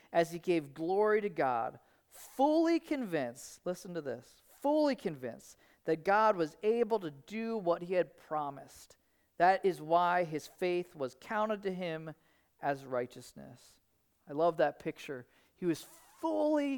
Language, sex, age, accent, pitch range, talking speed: English, male, 40-59, American, 170-240 Hz, 145 wpm